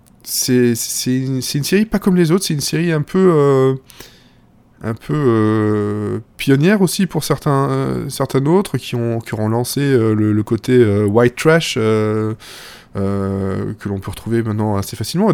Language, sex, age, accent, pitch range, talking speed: French, male, 20-39, French, 110-140 Hz, 190 wpm